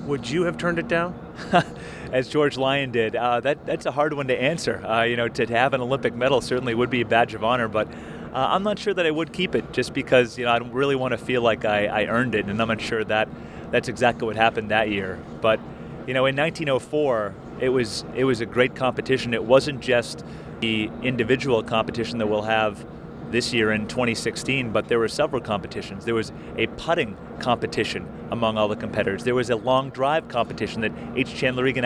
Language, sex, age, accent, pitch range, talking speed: English, male, 30-49, American, 110-130 Hz, 220 wpm